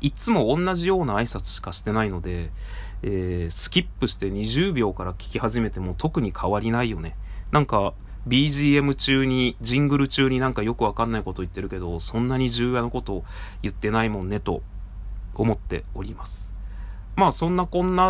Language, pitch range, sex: Japanese, 95-145 Hz, male